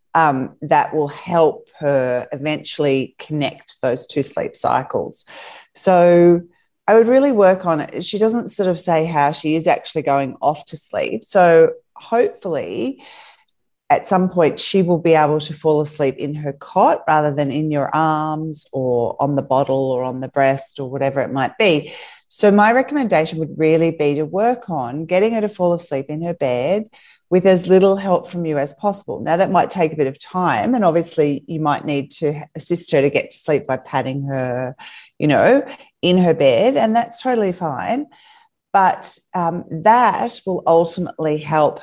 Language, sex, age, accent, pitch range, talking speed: English, female, 30-49, Australian, 145-205 Hz, 180 wpm